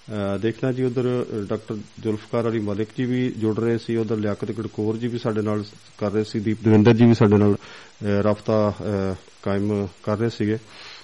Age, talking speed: 40-59, 185 wpm